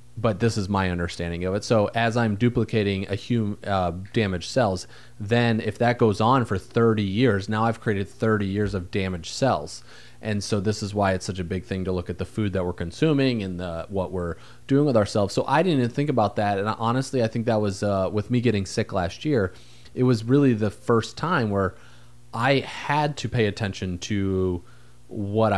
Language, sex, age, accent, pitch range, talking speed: English, male, 30-49, American, 95-120 Hz, 215 wpm